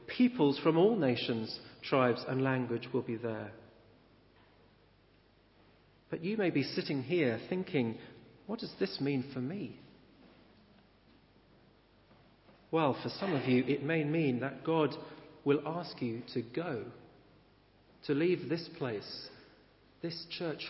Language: English